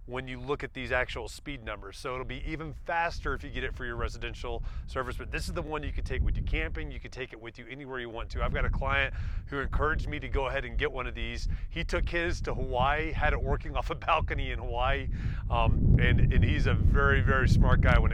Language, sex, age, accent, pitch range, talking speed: English, male, 30-49, American, 105-145 Hz, 265 wpm